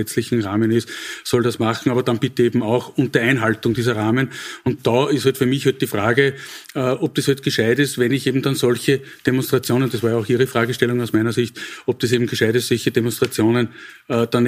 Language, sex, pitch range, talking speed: German, male, 120-145 Hz, 215 wpm